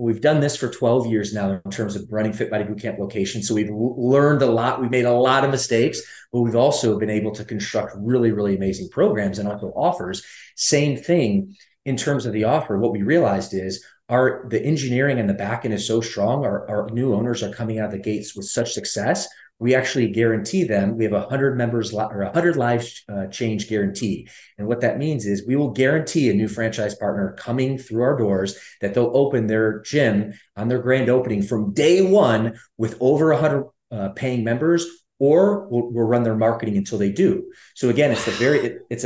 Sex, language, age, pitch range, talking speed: male, English, 30-49, 105-130 Hz, 215 wpm